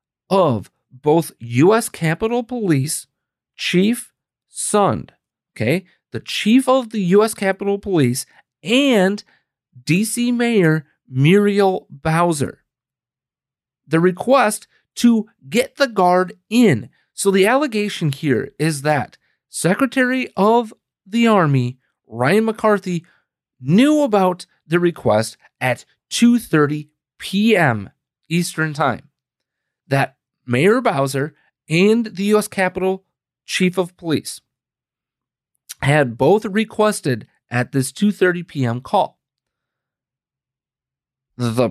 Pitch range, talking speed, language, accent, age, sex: 135-210 Hz, 95 wpm, English, American, 40-59, male